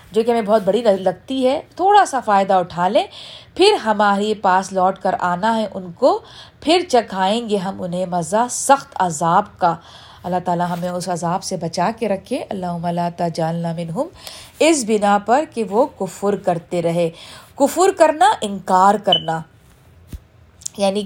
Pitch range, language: 180-240 Hz, Urdu